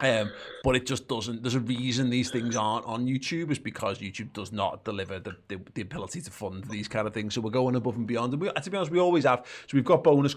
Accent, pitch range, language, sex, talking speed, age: British, 105-130 Hz, English, male, 270 wpm, 30-49